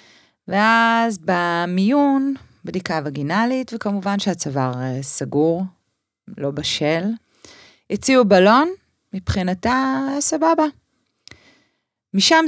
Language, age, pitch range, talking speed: Hebrew, 30-49, 145-195 Hz, 70 wpm